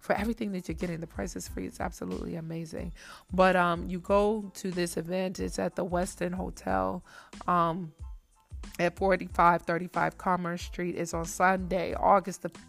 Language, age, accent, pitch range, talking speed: English, 20-39, American, 165-190 Hz, 160 wpm